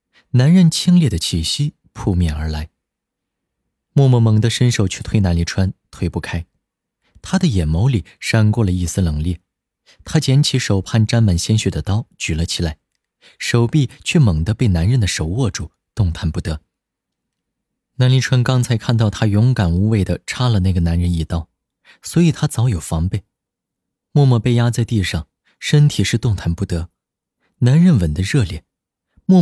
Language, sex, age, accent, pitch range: Chinese, male, 30-49, native, 90-130 Hz